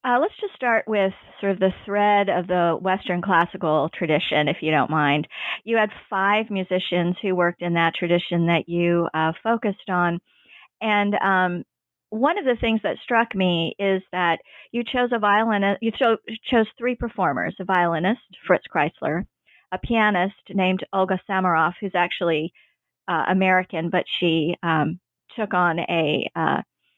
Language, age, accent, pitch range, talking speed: English, 40-59, American, 170-215 Hz, 160 wpm